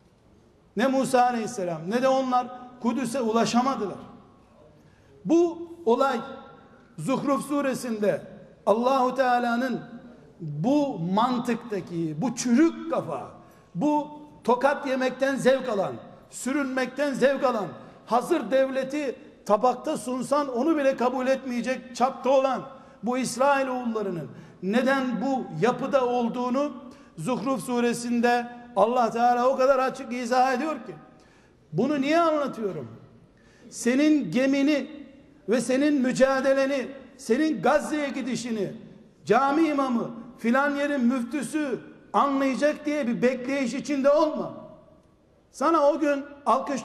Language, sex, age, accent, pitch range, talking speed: Turkish, male, 60-79, native, 240-275 Hz, 100 wpm